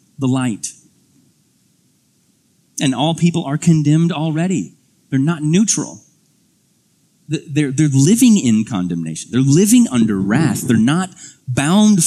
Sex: male